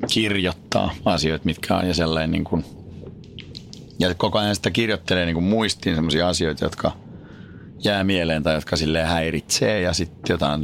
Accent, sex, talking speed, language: native, male, 160 wpm, Finnish